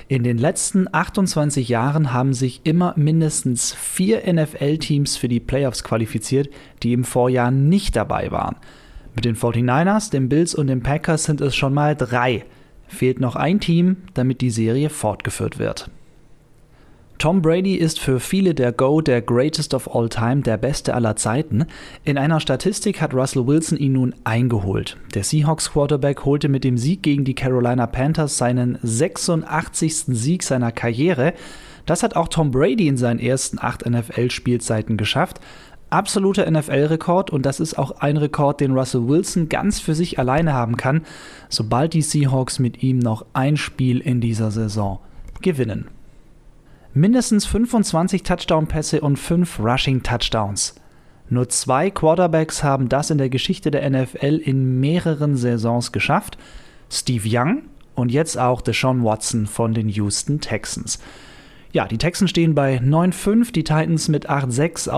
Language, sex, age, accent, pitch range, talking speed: German, male, 30-49, German, 125-160 Hz, 150 wpm